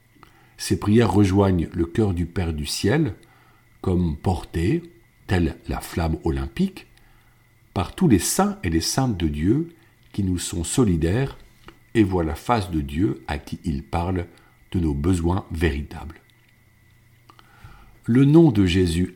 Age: 50-69